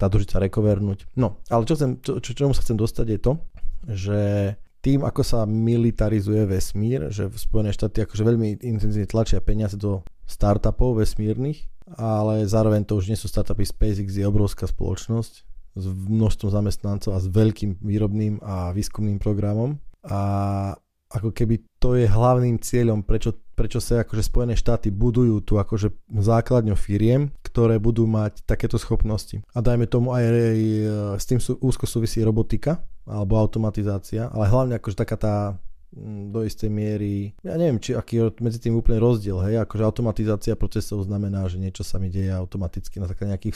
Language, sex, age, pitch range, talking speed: Slovak, male, 20-39, 100-115 Hz, 165 wpm